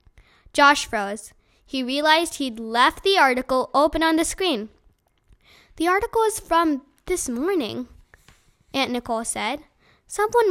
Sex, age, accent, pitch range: female, 10-29, American, 240-325 Hz